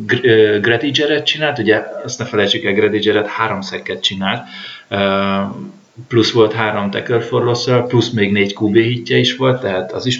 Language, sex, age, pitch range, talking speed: Hungarian, male, 30-49, 100-130 Hz, 145 wpm